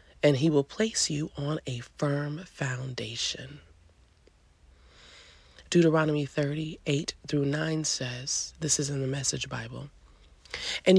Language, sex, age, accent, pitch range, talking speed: English, female, 30-49, American, 130-160 Hz, 115 wpm